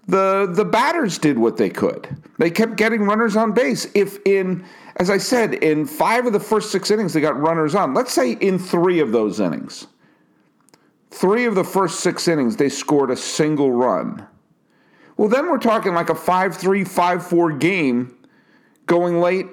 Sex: male